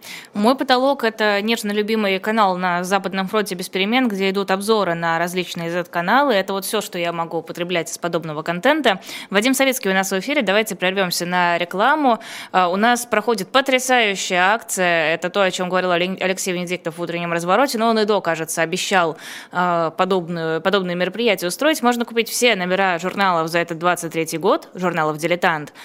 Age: 20-39